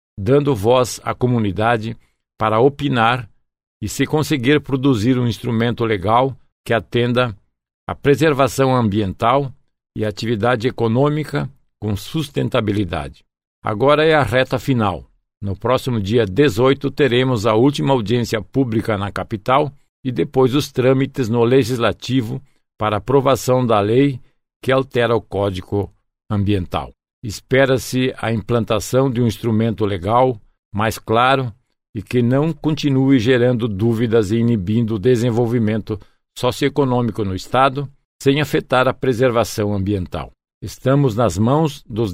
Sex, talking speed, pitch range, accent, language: male, 120 wpm, 110-135 Hz, Brazilian, Portuguese